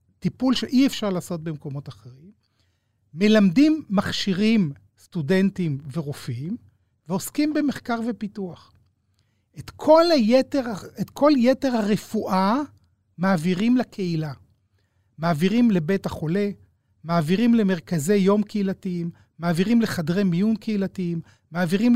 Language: Hebrew